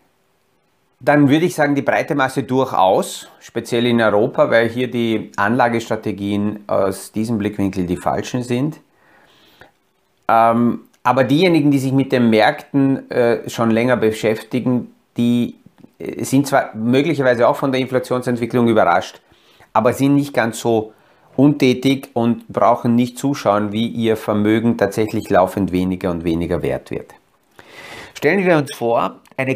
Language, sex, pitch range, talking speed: German, male, 110-130 Hz, 130 wpm